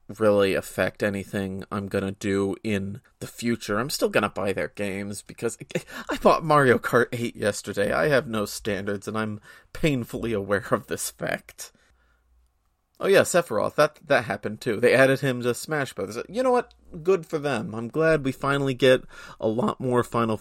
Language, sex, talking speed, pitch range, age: English, male, 175 wpm, 105-125 Hz, 30-49